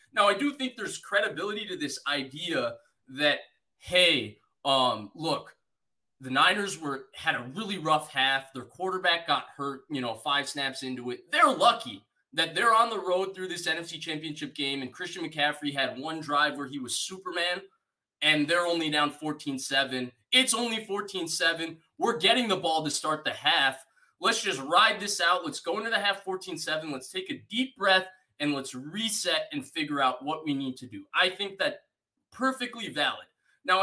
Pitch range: 145-210 Hz